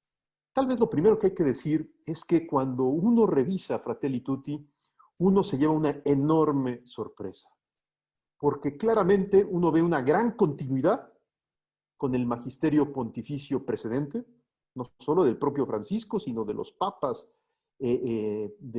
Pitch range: 140-205 Hz